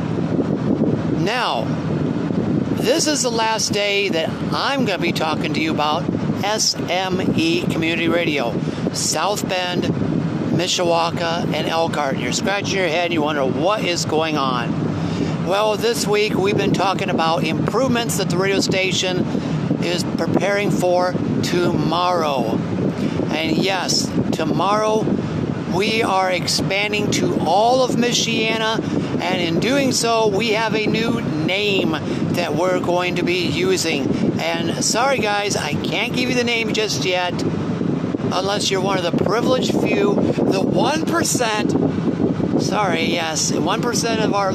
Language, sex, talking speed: English, male, 135 wpm